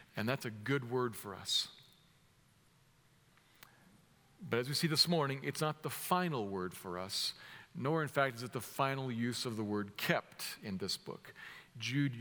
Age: 50-69